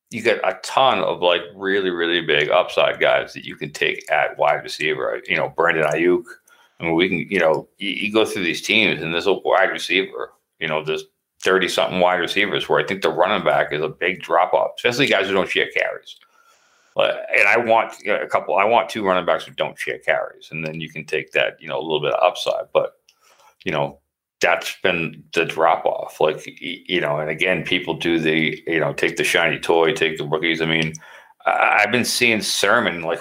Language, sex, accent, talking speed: English, male, American, 225 wpm